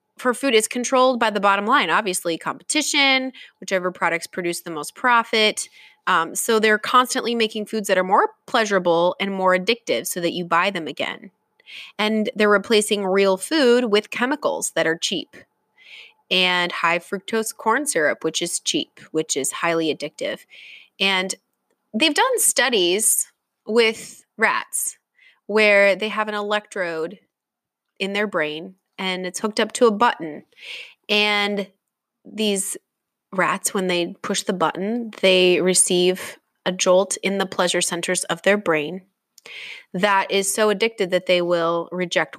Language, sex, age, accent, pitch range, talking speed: English, female, 20-39, American, 180-225 Hz, 150 wpm